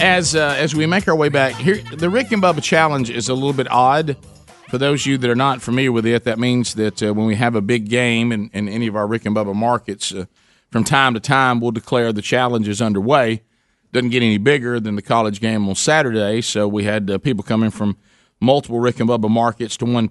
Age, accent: 40-59, American